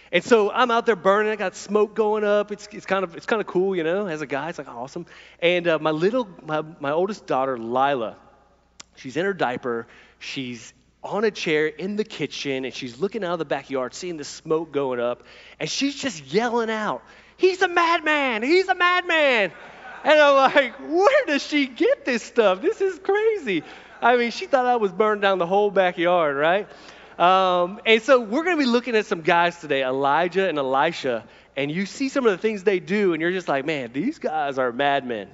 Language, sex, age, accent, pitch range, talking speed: English, male, 30-49, American, 155-240 Hz, 215 wpm